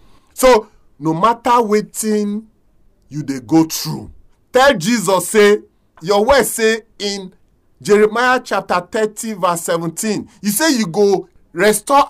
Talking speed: 130 wpm